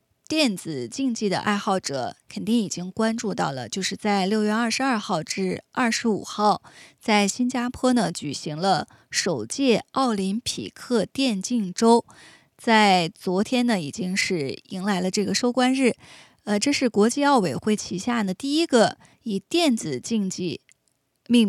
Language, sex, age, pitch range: Chinese, female, 20-39, 195-245 Hz